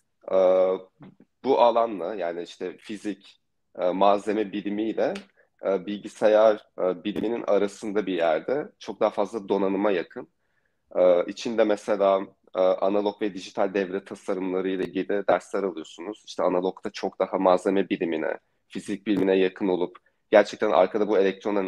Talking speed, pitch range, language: 120 wpm, 95-110 Hz, Turkish